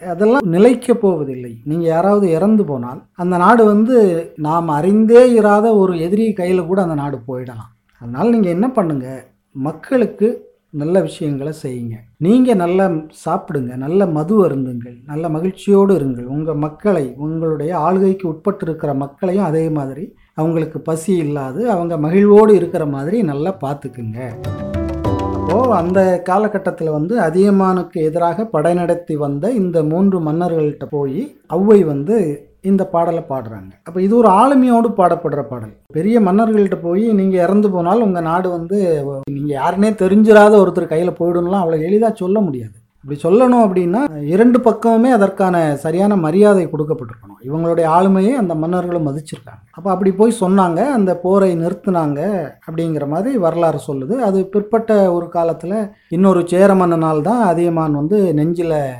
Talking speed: 135 wpm